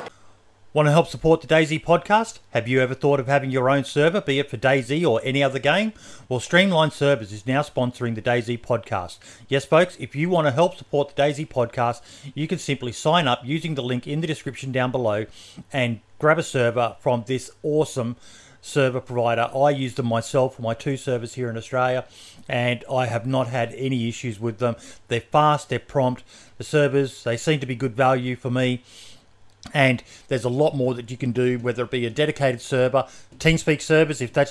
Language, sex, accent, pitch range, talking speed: English, male, Australian, 120-145 Hz, 205 wpm